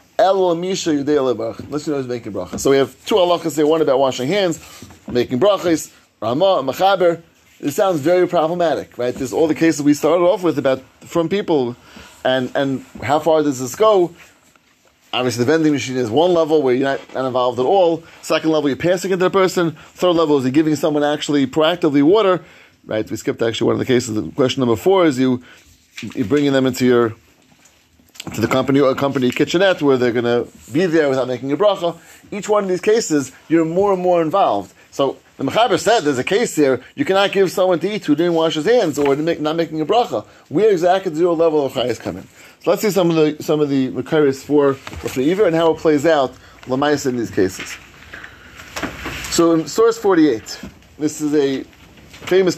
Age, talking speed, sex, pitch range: 30-49, 205 wpm, male, 130-170 Hz